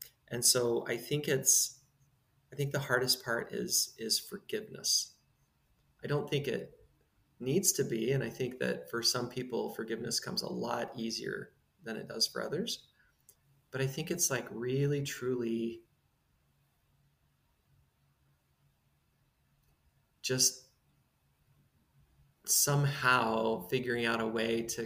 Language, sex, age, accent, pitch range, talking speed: English, male, 30-49, American, 110-135 Hz, 125 wpm